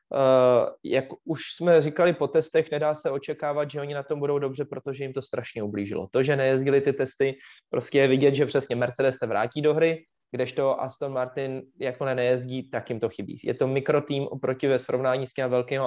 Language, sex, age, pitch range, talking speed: Czech, male, 20-39, 125-150 Hz, 200 wpm